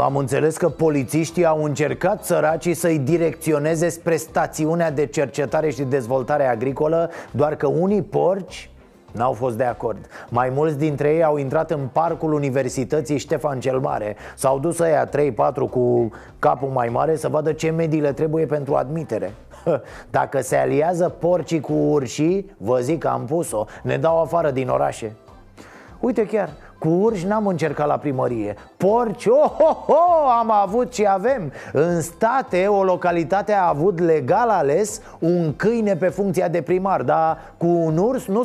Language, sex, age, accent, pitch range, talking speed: Romanian, male, 30-49, native, 145-175 Hz, 160 wpm